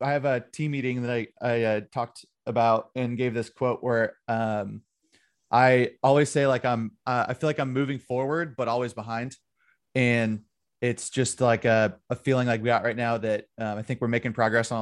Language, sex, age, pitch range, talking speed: English, male, 20-39, 110-125 Hz, 210 wpm